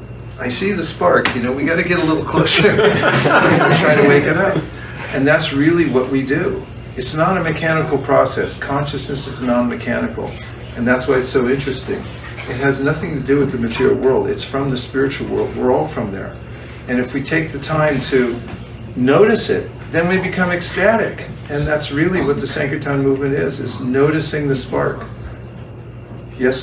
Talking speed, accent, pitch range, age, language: 185 wpm, American, 120-150 Hz, 50-69, English